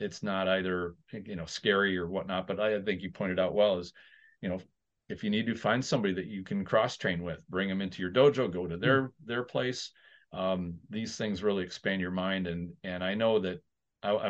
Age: 40-59